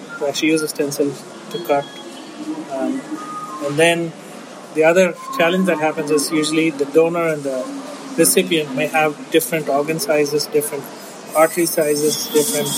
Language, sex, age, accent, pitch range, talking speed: English, male, 30-49, Indian, 150-185 Hz, 145 wpm